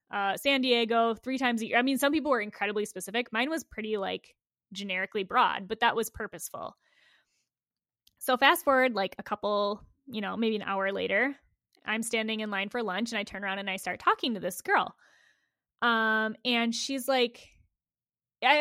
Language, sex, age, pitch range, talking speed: English, female, 10-29, 205-255 Hz, 185 wpm